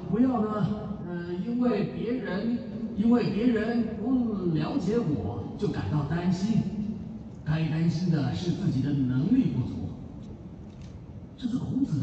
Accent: native